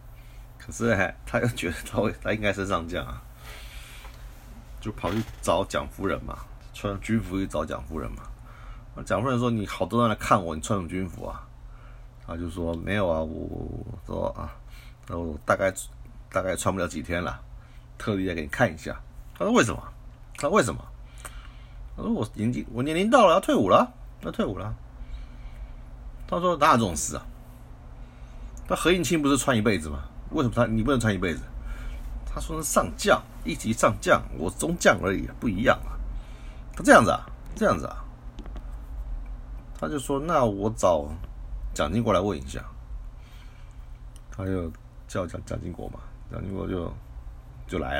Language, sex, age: Chinese, male, 50-69